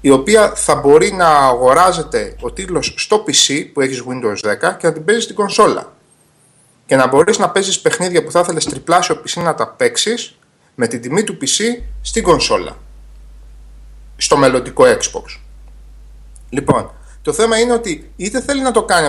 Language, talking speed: Greek, 170 wpm